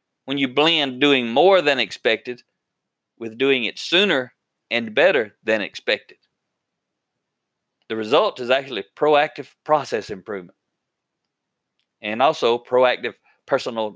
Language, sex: English, male